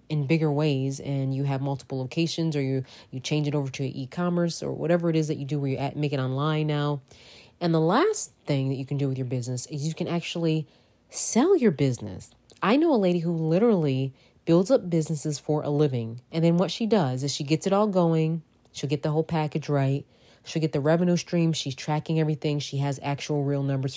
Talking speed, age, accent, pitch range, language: 225 wpm, 30-49, American, 135-165 Hz, English